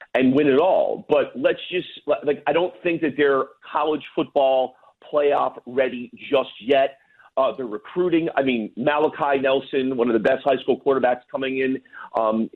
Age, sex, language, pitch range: 40-59, male, English, 135-195 Hz